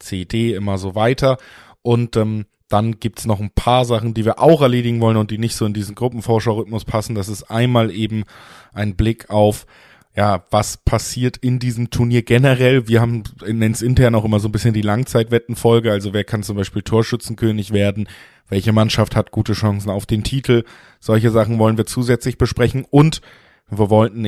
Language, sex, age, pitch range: German, male, 20-39, 100-120 Hz